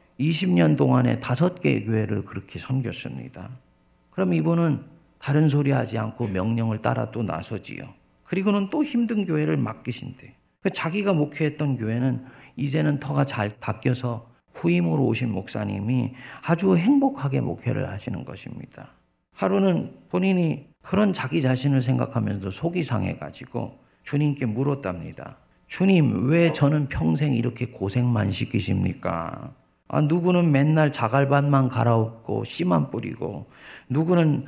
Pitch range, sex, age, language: 115-155 Hz, male, 50-69, Korean